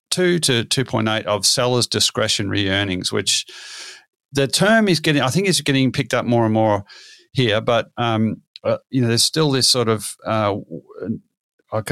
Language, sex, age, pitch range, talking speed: English, male, 40-59, 105-125 Hz, 165 wpm